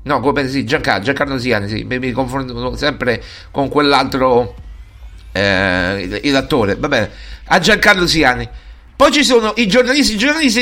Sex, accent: male, native